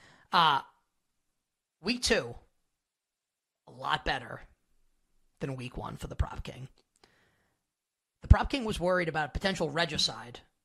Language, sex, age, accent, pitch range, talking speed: English, male, 30-49, American, 155-210 Hz, 125 wpm